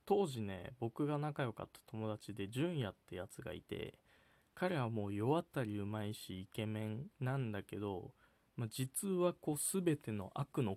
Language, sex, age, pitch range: Japanese, male, 20-39, 105-140 Hz